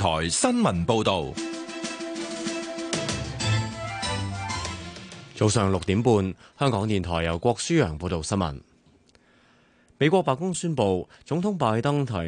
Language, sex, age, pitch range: Chinese, male, 20-39, 90-120 Hz